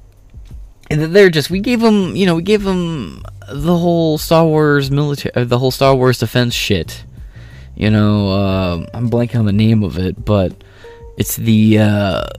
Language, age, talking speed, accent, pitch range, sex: English, 20-39, 175 wpm, American, 100-135 Hz, male